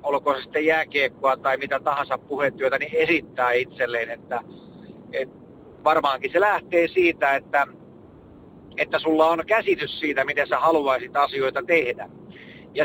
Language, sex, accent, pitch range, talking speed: Finnish, male, native, 140-165 Hz, 135 wpm